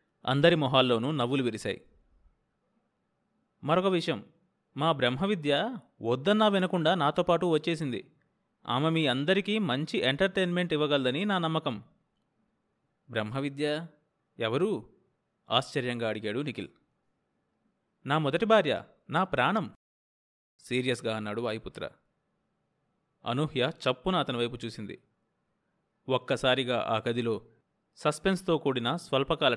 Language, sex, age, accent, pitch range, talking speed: Telugu, male, 30-49, native, 125-185 Hz, 90 wpm